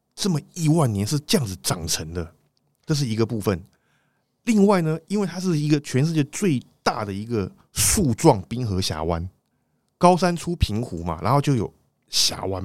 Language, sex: Chinese, male